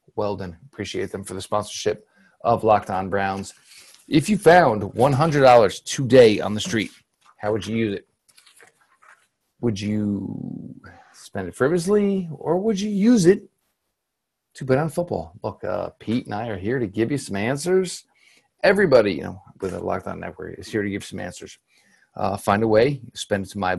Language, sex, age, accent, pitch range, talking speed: English, male, 40-59, American, 100-130 Hz, 180 wpm